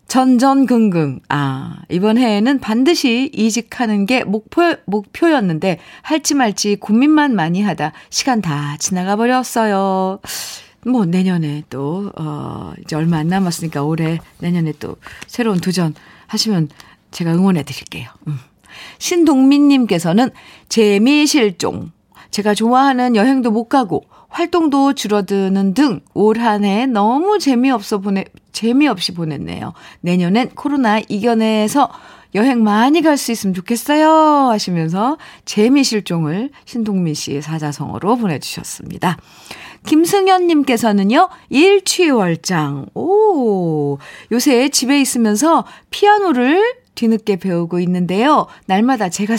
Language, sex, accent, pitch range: Korean, female, native, 185-270 Hz